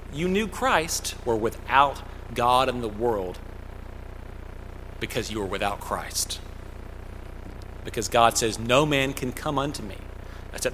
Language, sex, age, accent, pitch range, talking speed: English, male, 40-59, American, 95-130 Hz, 135 wpm